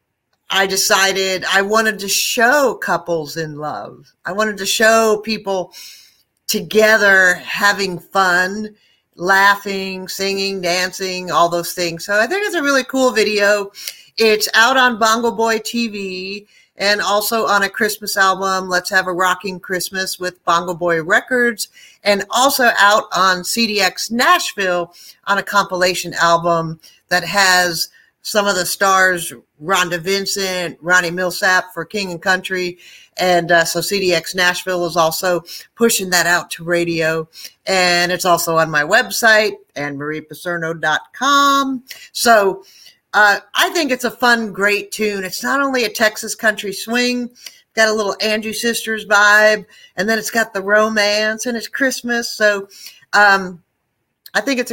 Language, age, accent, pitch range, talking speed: English, 50-69, American, 180-220 Hz, 145 wpm